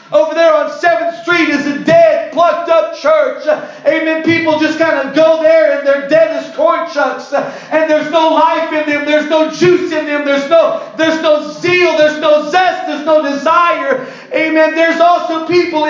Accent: American